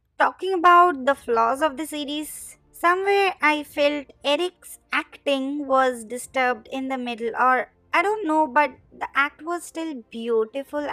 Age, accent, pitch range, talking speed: 20-39, native, 250-290 Hz, 150 wpm